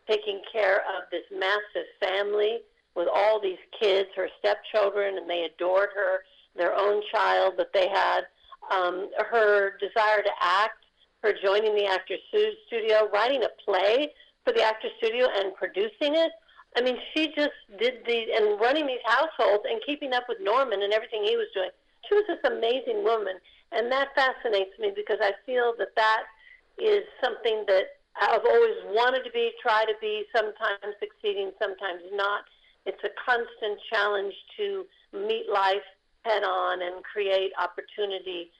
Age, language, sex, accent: 50-69, English, female, American